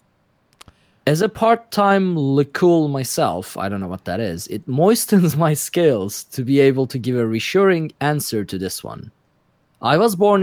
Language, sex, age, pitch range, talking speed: English, male, 30-49, 120-170 Hz, 165 wpm